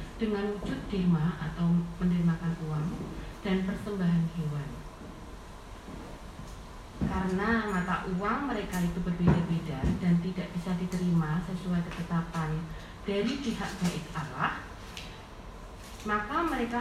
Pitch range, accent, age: 165-215 Hz, native, 30-49